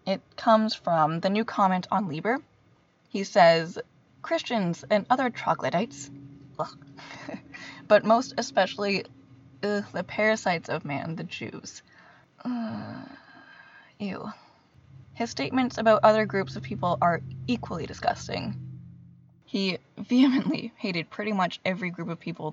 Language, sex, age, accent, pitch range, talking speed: English, female, 20-39, American, 160-215 Hz, 115 wpm